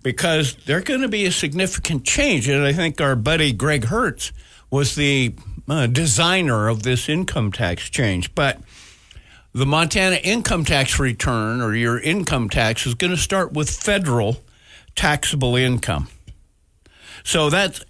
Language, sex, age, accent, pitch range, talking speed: English, male, 60-79, American, 110-150 Hz, 150 wpm